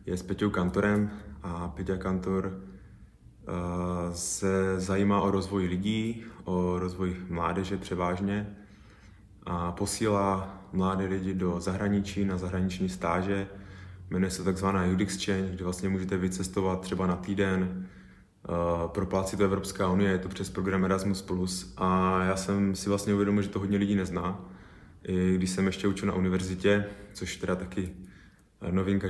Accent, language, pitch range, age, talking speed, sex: native, Czech, 90-100 Hz, 20-39, 140 wpm, male